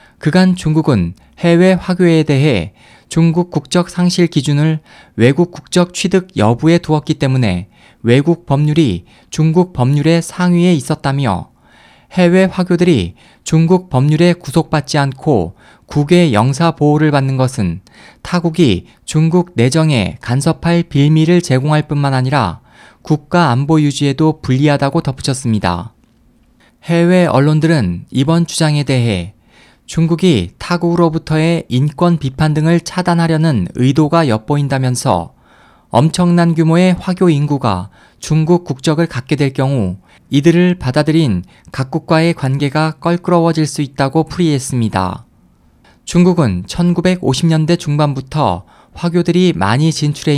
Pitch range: 125-170 Hz